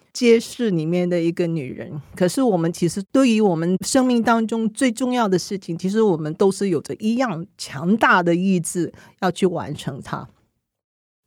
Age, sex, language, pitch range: 40-59, female, Chinese, 170-225 Hz